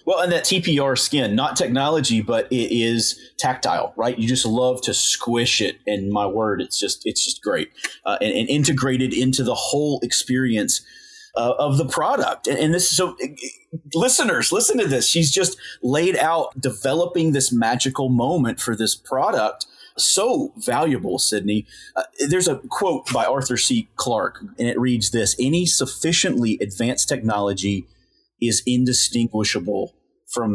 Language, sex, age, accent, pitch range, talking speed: English, male, 30-49, American, 115-155 Hz, 155 wpm